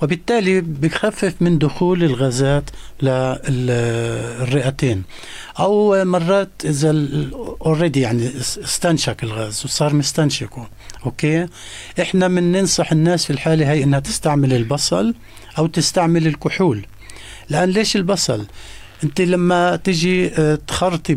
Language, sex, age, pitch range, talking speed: Arabic, male, 60-79, 130-170 Hz, 100 wpm